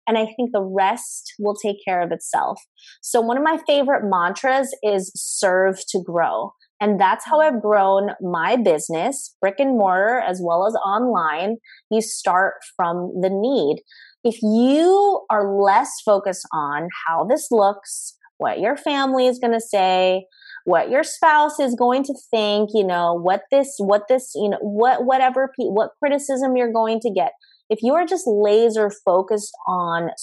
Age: 20-39